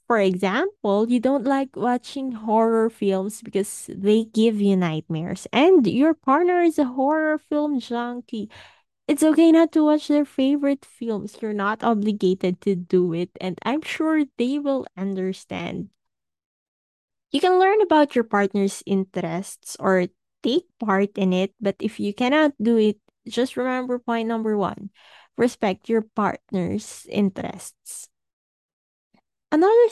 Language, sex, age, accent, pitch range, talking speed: English, female, 20-39, Filipino, 195-275 Hz, 140 wpm